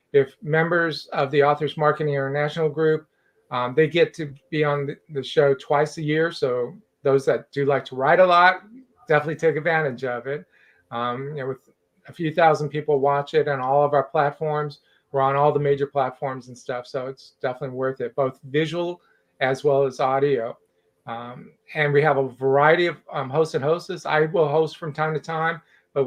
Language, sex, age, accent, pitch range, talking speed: English, male, 40-59, American, 135-160 Hz, 200 wpm